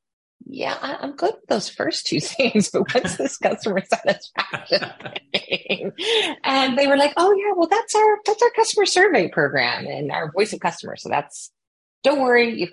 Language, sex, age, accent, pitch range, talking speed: English, female, 30-49, American, 140-210 Hz, 180 wpm